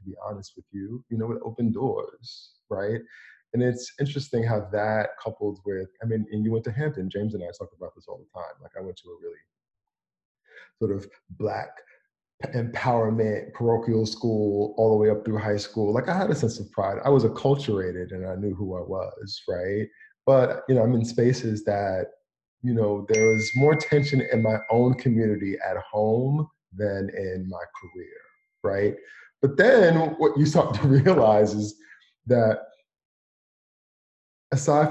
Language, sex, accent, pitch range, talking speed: English, male, American, 100-125 Hz, 175 wpm